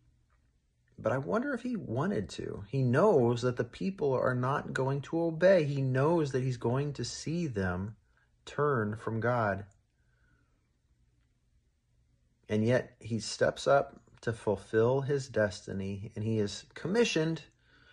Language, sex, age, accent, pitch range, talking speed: English, male, 40-59, American, 100-130 Hz, 135 wpm